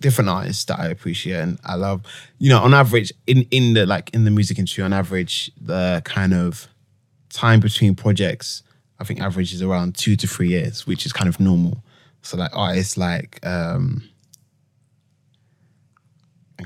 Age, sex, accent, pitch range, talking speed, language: 20-39, male, British, 95-130 Hz, 170 wpm, English